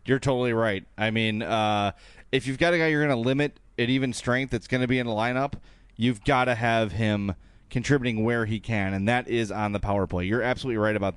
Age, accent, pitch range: 30-49, American, 110-160 Hz